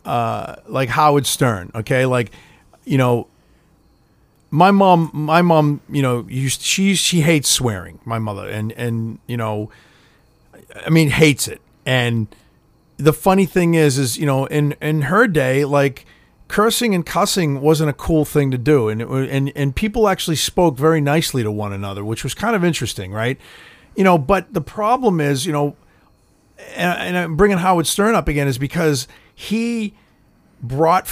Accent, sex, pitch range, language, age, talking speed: American, male, 130-175 Hz, English, 40-59, 170 wpm